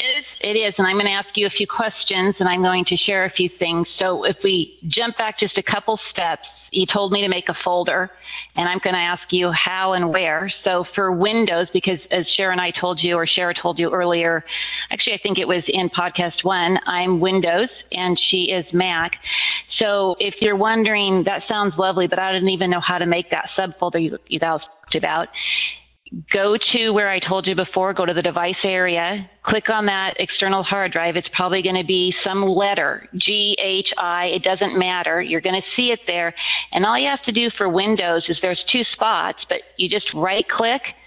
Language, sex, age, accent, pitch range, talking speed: English, female, 40-59, American, 175-200 Hz, 215 wpm